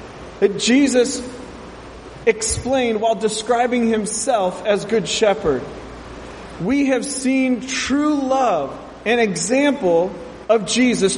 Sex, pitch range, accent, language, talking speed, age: male, 205-255 Hz, American, English, 95 wpm, 30-49